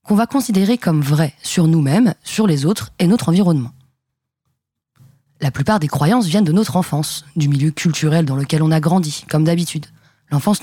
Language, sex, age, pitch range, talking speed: French, female, 20-39, 145-190 Hz, 180 wpm